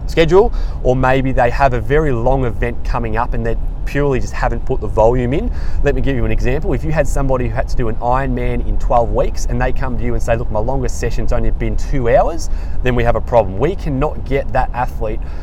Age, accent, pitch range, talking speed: 20-39, Australian, 110-135 Hz, 250 wpm